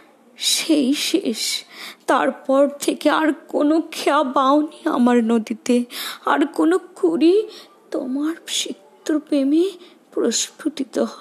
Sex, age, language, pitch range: female, 20-39, Bengali, 255-315 Hz